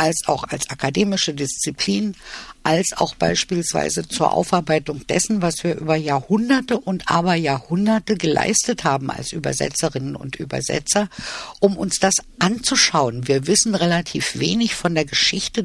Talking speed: 135 wpm